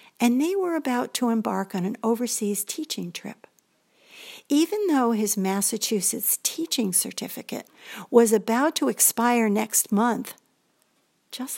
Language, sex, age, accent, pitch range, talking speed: English, female, 60-79, American, 215-285 Hz, 125 wpm